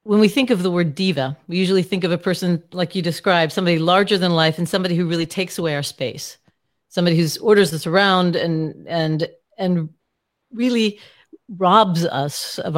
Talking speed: 190 wpm